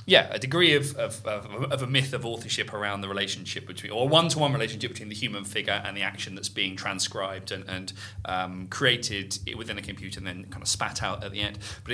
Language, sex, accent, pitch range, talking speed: English, male, British, 105-130 Hz, 235 wpm